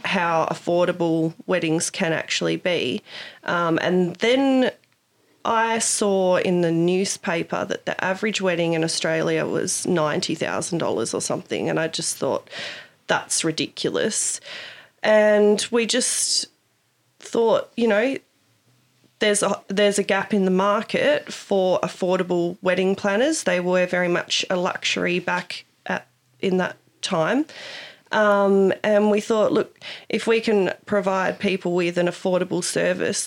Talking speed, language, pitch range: 130 wpm, English, 175-210 Hz